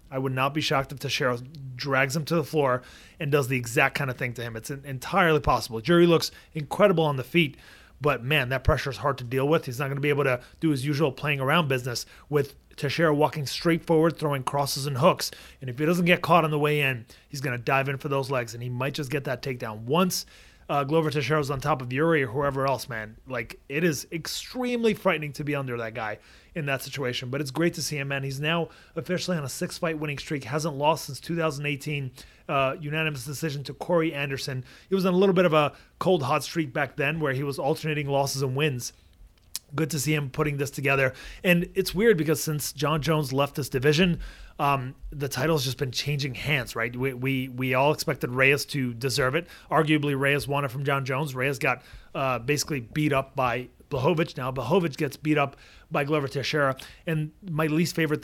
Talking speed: 225 wpm